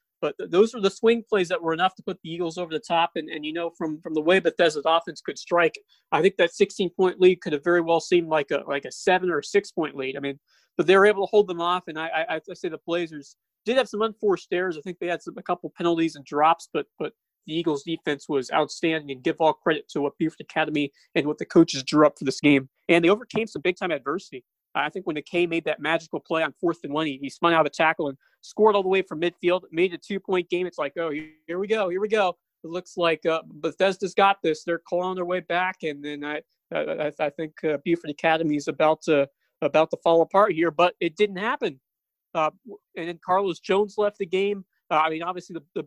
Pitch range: 155-185 Hz